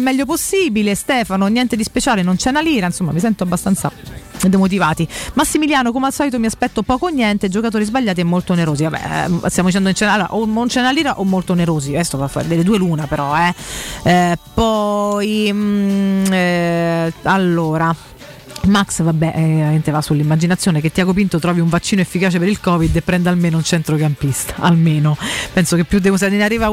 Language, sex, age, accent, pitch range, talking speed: Italian, female, 30-49, native, 165-215 Hz, 195 wpm